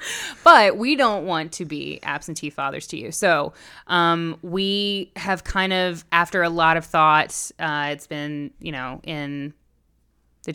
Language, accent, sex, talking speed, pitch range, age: English, American, female, 160 wpm, 150-185 Hz, 10-29